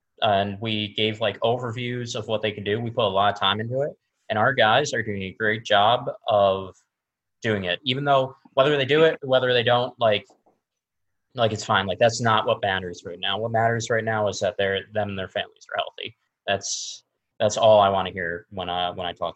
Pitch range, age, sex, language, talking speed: 95-110 Hz, 20-39, male, English, 230 wpm